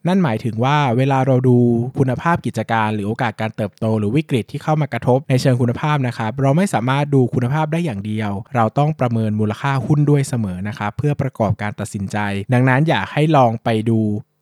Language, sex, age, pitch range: Thai, male, 20-39, 110-140 Hz